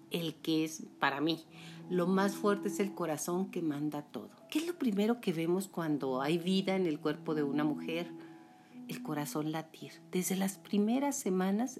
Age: 50-69